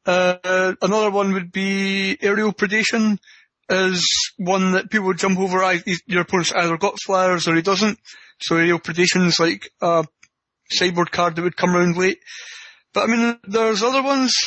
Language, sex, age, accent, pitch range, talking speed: English, male, 30-49, British, 180-215 Hz, 170 wpm